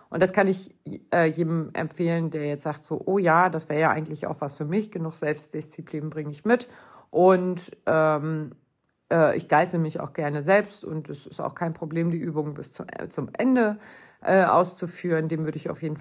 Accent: German